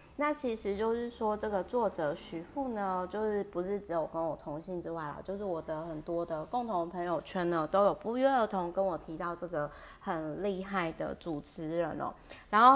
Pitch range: 165-195 Hz